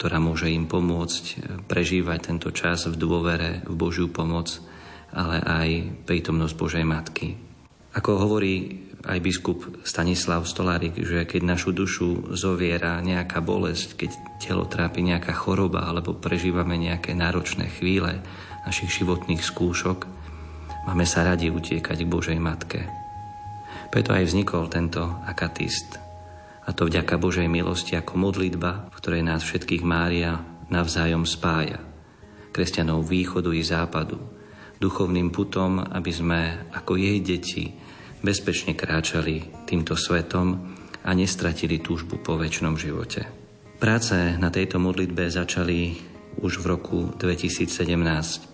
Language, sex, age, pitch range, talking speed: Slovak, male, 40-59, 85-90 Hz, 120 wpm